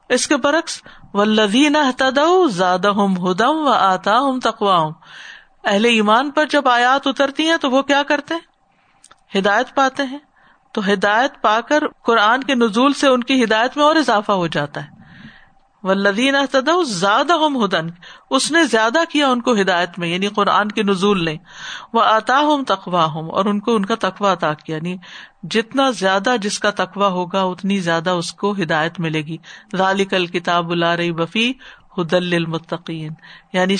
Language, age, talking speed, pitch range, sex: Urdu, 50-69, 150 wpm, 190-245 Hz, female